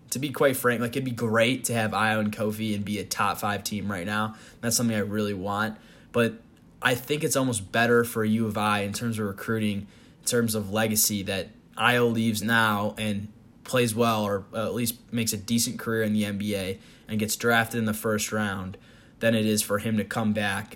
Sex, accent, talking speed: male, American, 220 wpm